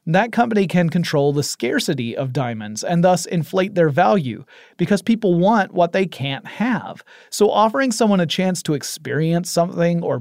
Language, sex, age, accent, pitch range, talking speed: English, male, 30-49, American, 145-185 Hz, 170 wpm